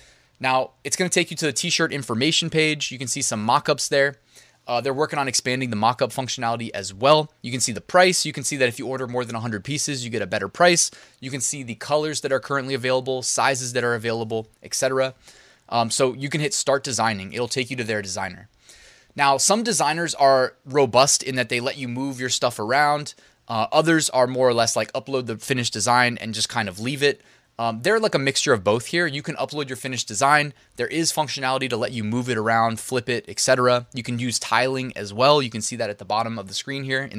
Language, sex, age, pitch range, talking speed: English, male, 20-39, 115-145 Hz, 240 wpm